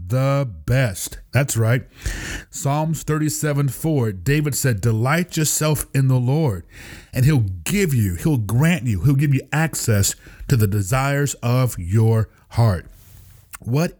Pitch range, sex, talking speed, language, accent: 115-150 Hz, male, 135 wpm, English, American